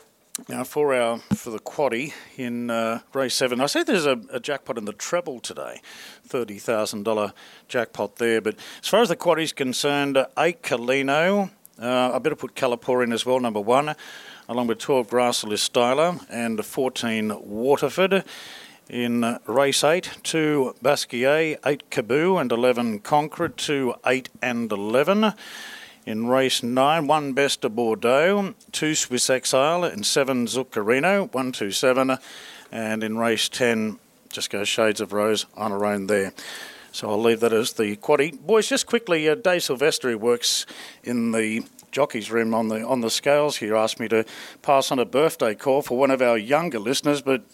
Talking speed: 170 wpm